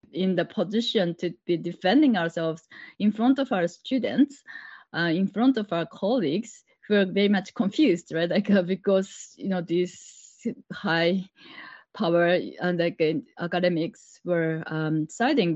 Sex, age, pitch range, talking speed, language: female, 20-39, 165-210 Hz, 145 wpm, English